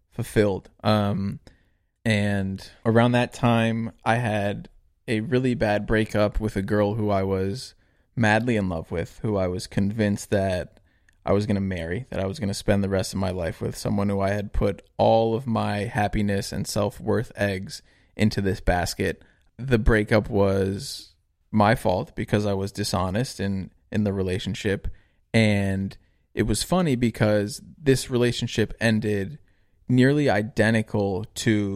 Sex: male